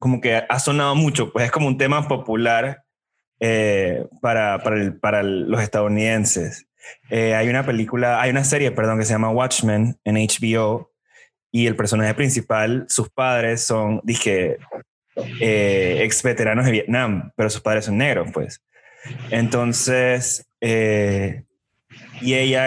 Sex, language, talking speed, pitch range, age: male, Spanish, 145 wpm, 110-130 Hz, 20-39